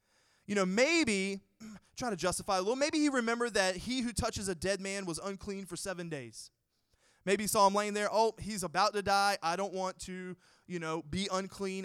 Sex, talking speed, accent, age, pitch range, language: male, 215 wpm, American, 20-39, 130-200 Hz, English